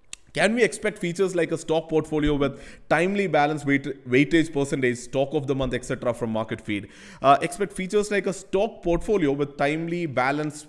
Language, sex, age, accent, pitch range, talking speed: English, male, 20-39, Indian, 135-195 Hz, 175 wpm